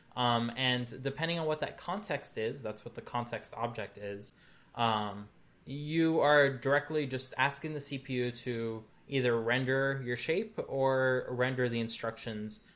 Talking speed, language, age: 145 wpm, English, 20-39